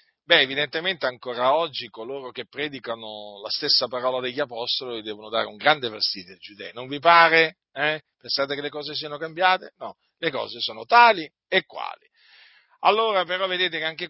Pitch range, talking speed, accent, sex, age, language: 105-155 Hz, 175 wpm, native, male, 40-59, Italian